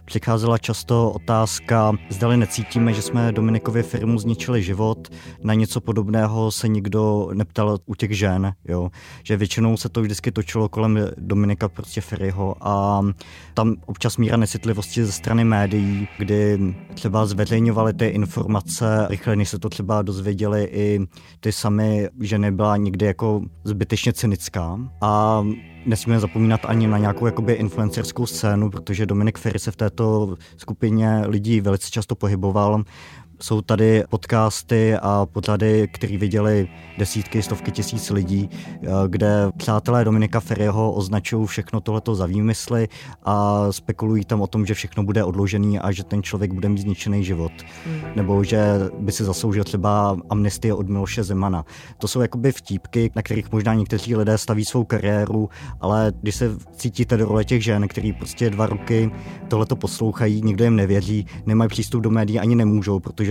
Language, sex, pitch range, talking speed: Czech, male, 100-110 Hz, 155 wpm